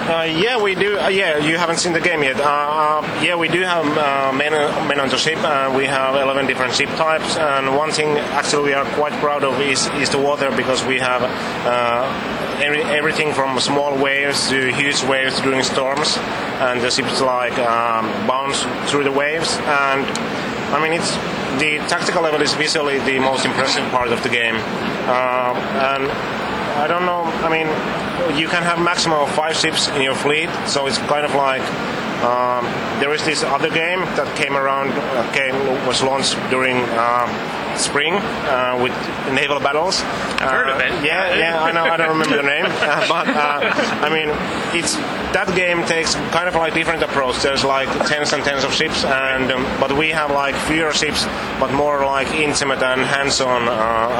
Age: 30-49